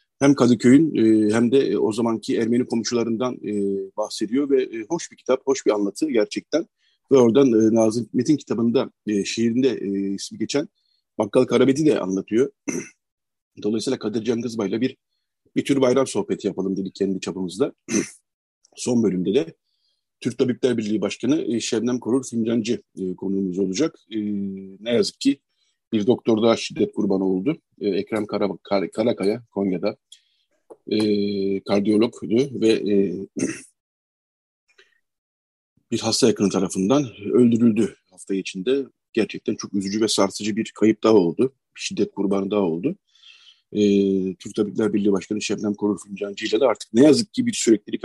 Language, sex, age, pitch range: Turkish, male, 50-69, 100-130 Hz